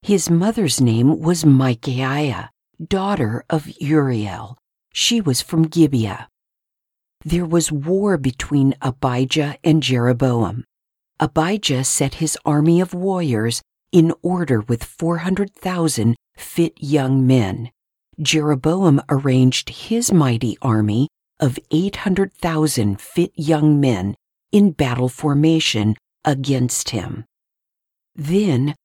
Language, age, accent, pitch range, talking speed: English, 50-69, American, 125-170 Hz, 100 wpm